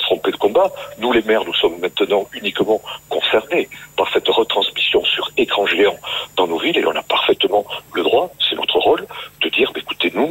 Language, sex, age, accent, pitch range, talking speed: French, male, 60-79, French, 360-460 Hz, 190 wpm